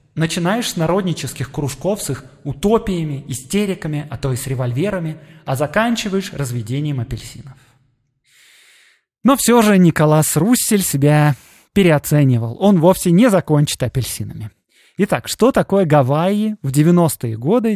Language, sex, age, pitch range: Russian, male, 20-39, 135-185 Hz